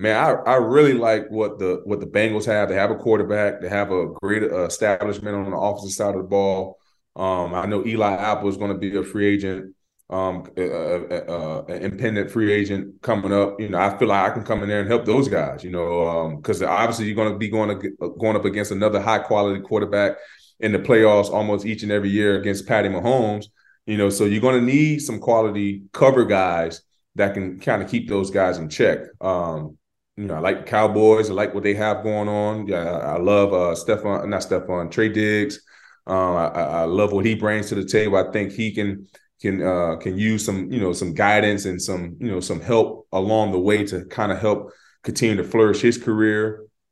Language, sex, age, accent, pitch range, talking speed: English, male, 20-39, American, 95-110 Hz, 220 wpm